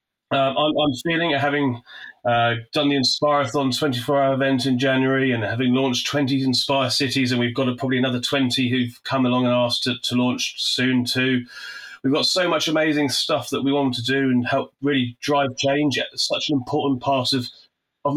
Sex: male